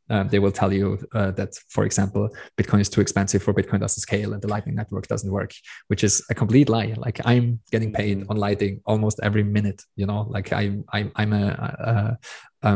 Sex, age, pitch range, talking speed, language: male, 20-39, 100-110 Hz, 220 wpm, English